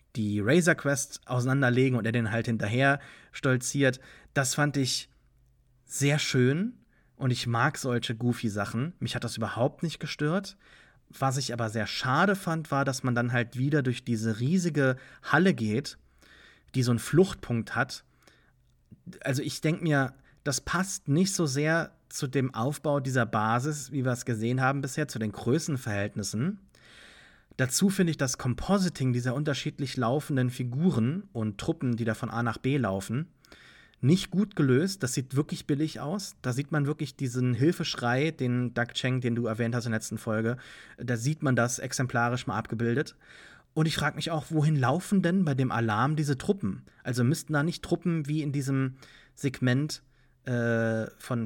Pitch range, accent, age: 120-150 Hz, German, 30-49